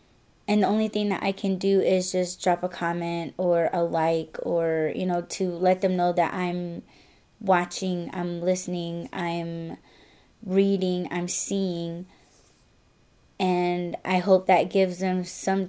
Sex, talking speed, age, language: female, 150 wpm, 20-39, English